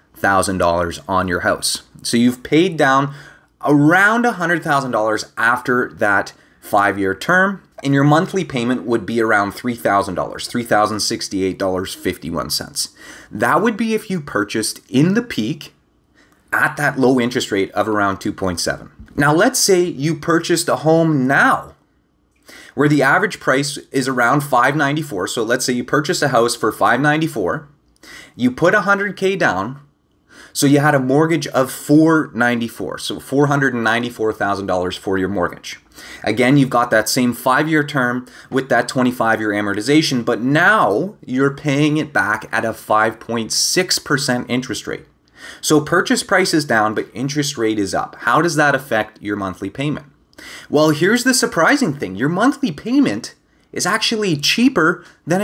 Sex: male